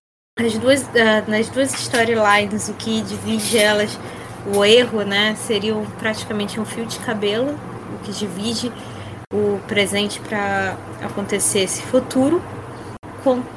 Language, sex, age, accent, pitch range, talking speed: Portuguese, female, 20-39, Brazilian, 220-260 Hz, 125 wpm